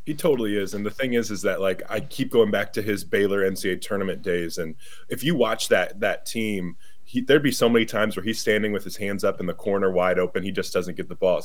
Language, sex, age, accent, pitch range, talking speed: English, male, 20-39, American, 105-150 Hz, 265 wpm